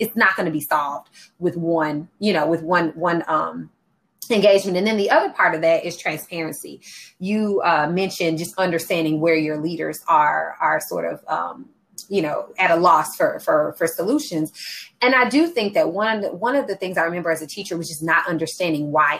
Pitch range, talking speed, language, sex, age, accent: 160-195 Hz, 215 wpm, English, female, 30-49, American